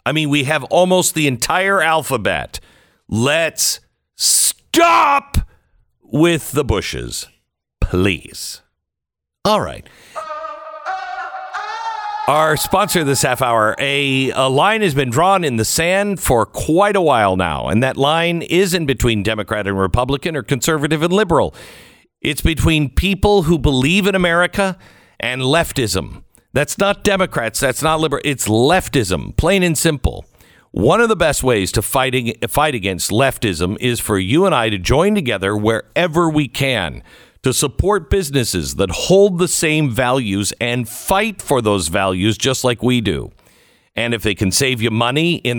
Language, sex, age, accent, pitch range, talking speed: English, male, 50-69, American, 115-175 Hz, 145 wpm